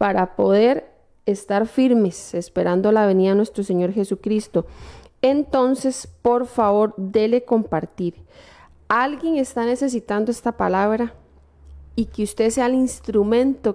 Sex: female